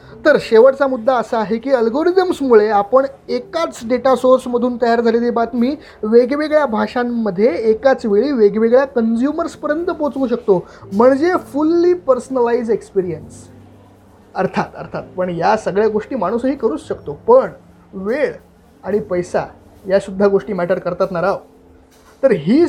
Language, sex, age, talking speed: Marathi, male, 20-39, 125 wpm